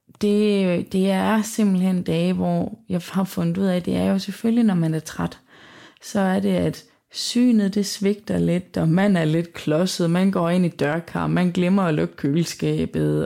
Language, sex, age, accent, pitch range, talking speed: Danish, female, 20-39, native, 160-200 Hz, 195 wpm